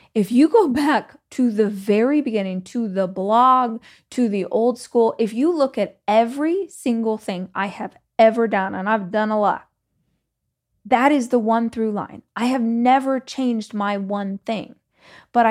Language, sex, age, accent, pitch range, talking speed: English, female, 20-39, American, 200-255 Hz, 175 wpm